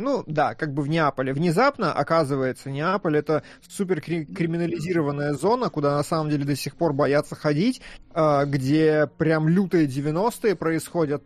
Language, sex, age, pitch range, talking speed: Russian, male, 20-39, 145-170 Hz, 150 wpm